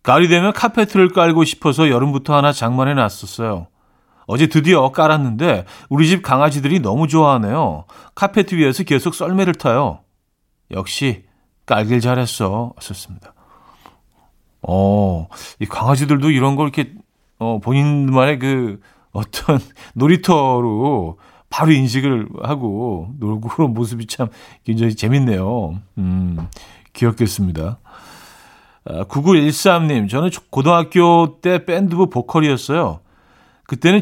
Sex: male